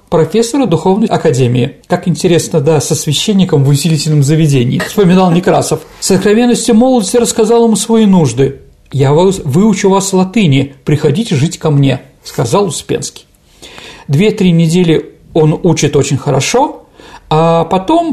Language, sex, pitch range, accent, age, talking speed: Russian, male, 155-220 Hz, native, 40-59, 130 wpm